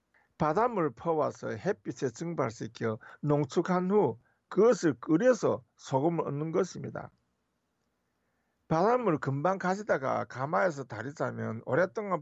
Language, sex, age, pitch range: Korean, male, 50-69, 125-180 Hz